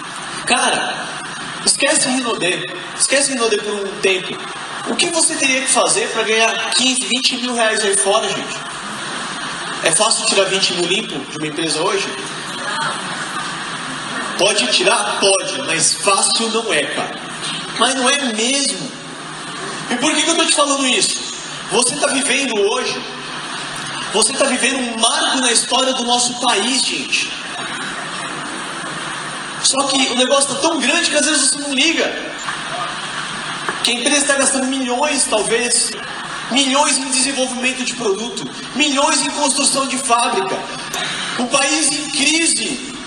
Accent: Brazilian